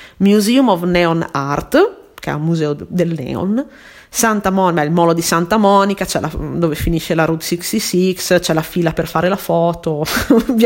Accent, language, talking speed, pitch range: native, Italian, 185 wpm, 170-215 Hz